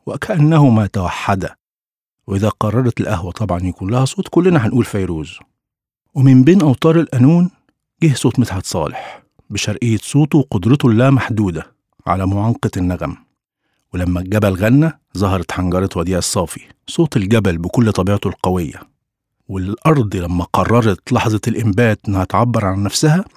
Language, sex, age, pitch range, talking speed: Arabic, male, 50-69, 100-135 Hz, 125 wpm